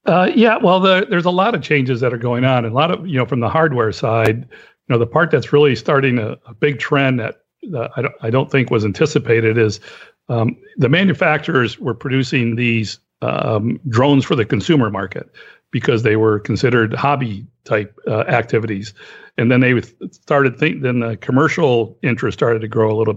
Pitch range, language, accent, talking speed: 110-140 Hz, English, American, 200 wpm